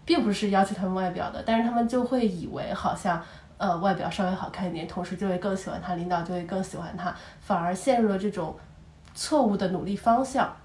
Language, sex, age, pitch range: Chinese, female, 20-39, 185-235 Hz